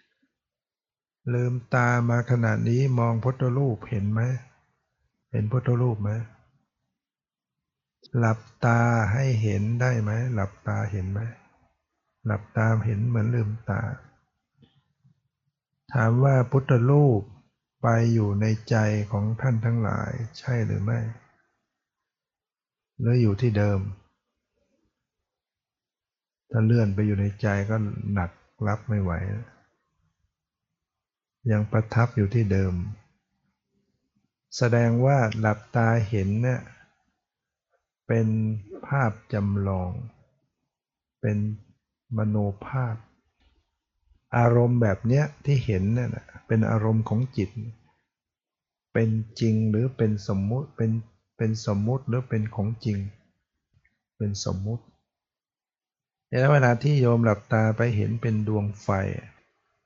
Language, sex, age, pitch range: English, male, 60-79, 105-120 Hz